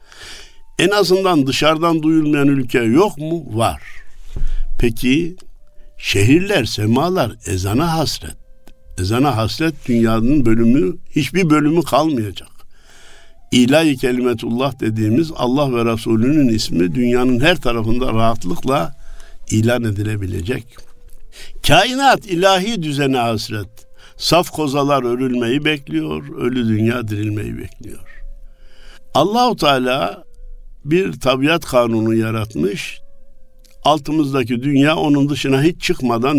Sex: male